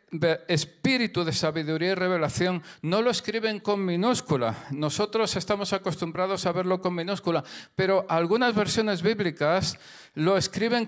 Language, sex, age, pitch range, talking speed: Spanish, male, 50-69, 150-205 Hz, 125 wpm